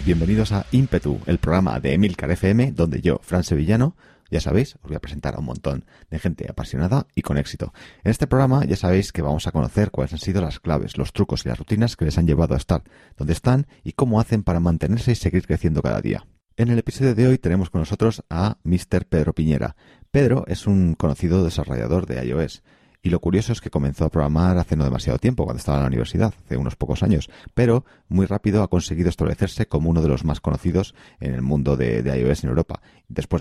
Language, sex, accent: Spanish, male, Spanish